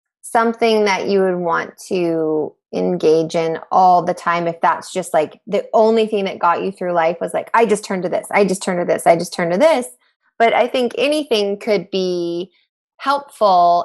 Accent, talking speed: American, 205 wpm